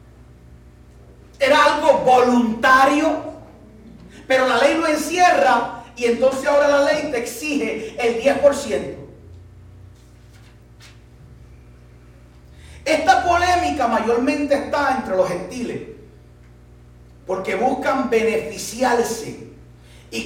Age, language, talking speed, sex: 40-59, Spanish, 85 wpm, male